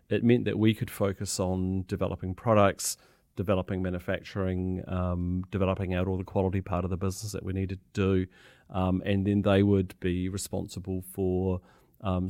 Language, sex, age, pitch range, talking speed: English, male, 40-59, 95-100 Hz, 170 wpm